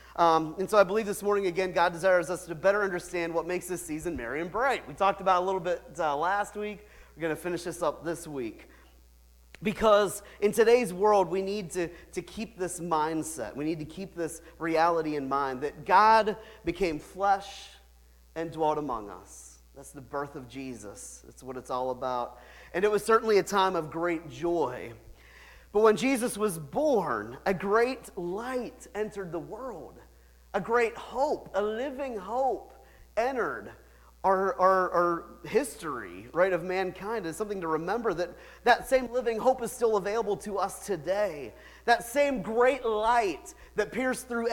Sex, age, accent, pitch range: male, 40-59, American, 160-220 Hz